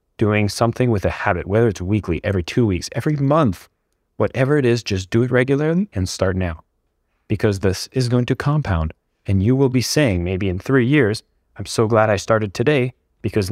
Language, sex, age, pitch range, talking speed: English, male, 30-49, 90-120 Hz, 200 wpm